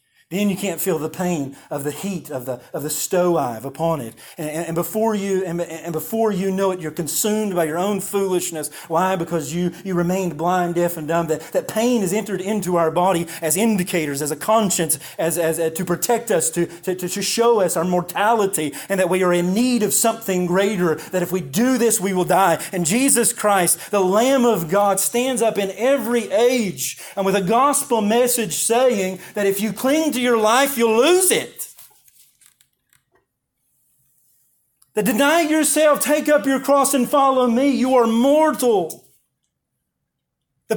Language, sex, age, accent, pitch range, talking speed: English, male, 30-49, American, 175-260 Hz, 190 wpm